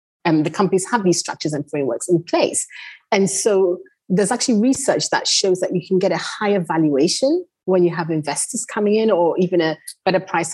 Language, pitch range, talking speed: English, 160-240 Hz, 200 wpm